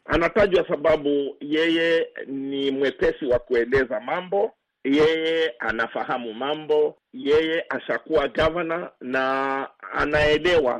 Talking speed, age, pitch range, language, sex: 90 wpm, 50-69, 135-185 Hz, Swahili, male